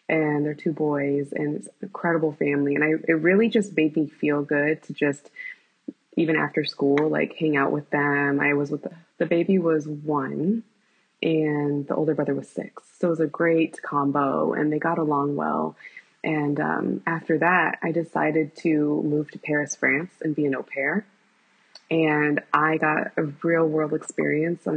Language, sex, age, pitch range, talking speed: English, female, 20-39, 145-165 Hz, 185 wpm